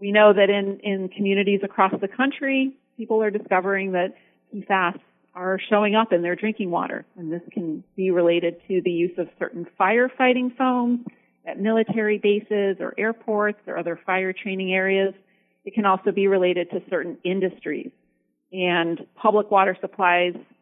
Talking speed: 160 wpm